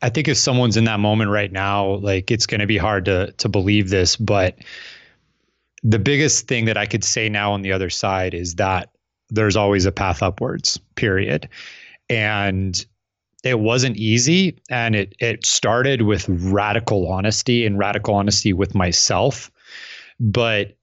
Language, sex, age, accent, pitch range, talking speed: English, male, 30-49, American, 100-120 Hz, 165 wpm